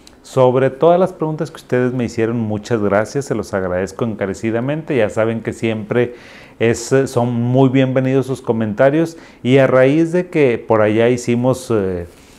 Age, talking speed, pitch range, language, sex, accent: 40-59, 160 wpm, 105-130 Hz, Spanish, male, Mexican